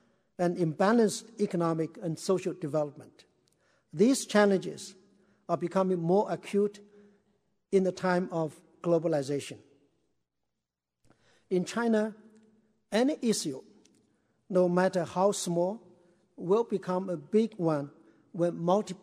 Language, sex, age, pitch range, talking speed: English, male, 60-79, 165-200 Hz, 100 wpm